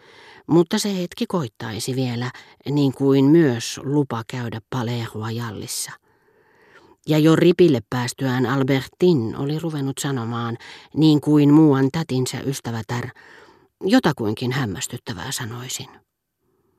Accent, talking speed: native, 100 wpm